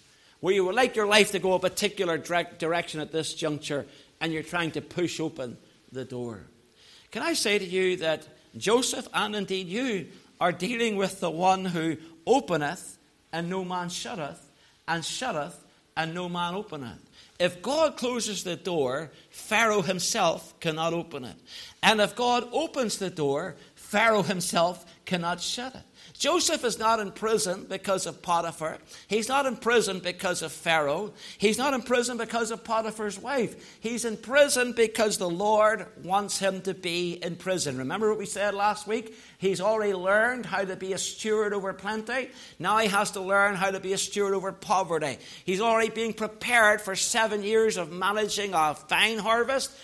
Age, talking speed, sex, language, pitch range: 60-79, 175 wpm, male, English, 175-225 Hz